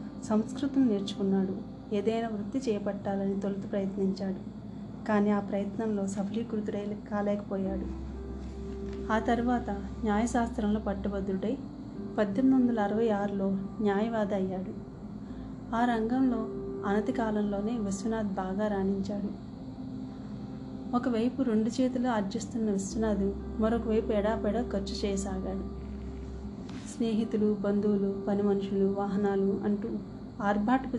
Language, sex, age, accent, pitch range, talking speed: Telugu, female, 30-49, native, 200-225 Hz, 85 wpm